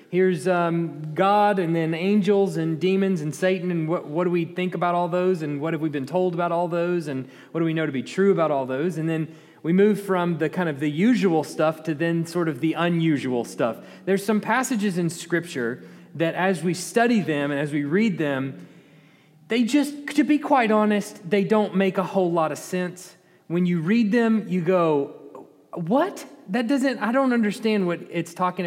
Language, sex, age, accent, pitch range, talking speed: English, male, 30-49, American, 160-200 Hz, 210 wpm